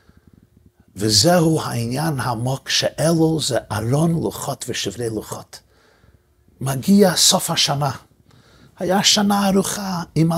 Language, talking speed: Hebrew, 95 wpm